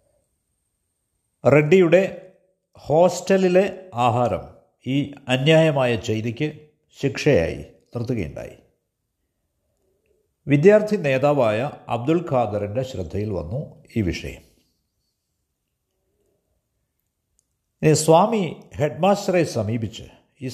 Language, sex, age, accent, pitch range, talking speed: Malayalam, male, 60-79, native, 100-155 Hz, 60 wpm